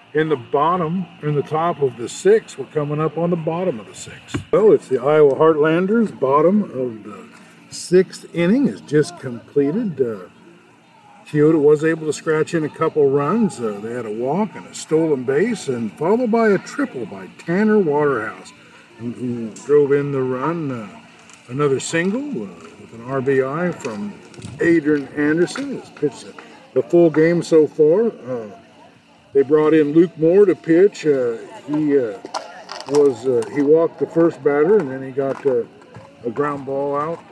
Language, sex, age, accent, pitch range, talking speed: English, male, 50-69, American, 140-200 Hz, 170 wpm